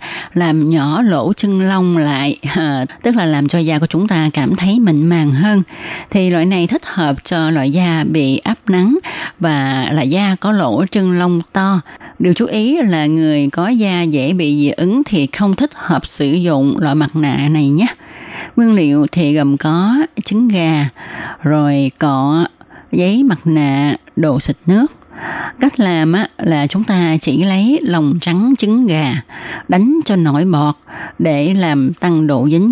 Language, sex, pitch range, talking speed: Vietnamese, female, 150-200 Hz, 175 wpm